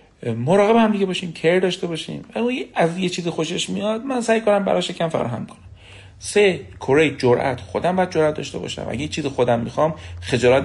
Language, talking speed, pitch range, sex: Persian, 195 wpm, 115-180 Hz, male